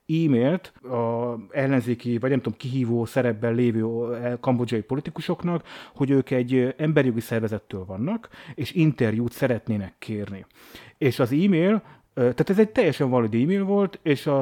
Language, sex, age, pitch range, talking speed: Hungarian, male, 30-49, 120-155 Hz, 135 wpm